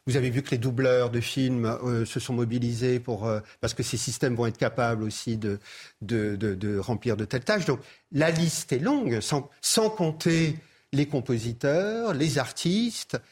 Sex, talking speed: male, 180 wpm